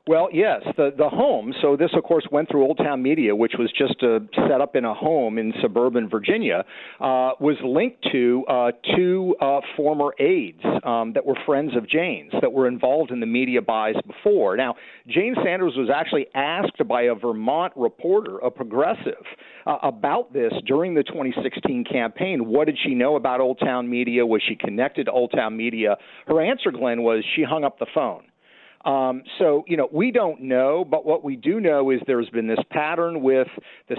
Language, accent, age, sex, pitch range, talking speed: English, American, 50-69, male, 120-150 Hz, 195 wpm